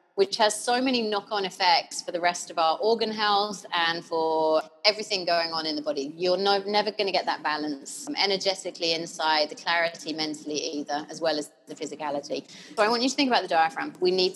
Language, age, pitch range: English, 30-49, 160-205 Hz